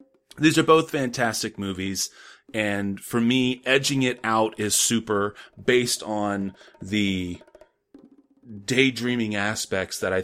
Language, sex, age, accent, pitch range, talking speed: English, male, 30-49, American, 95-130 Hz, 115 wpm